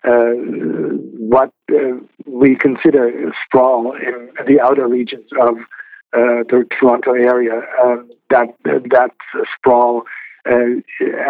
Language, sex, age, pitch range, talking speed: English, male, 50-69, 120-130 Hz, 105 wpm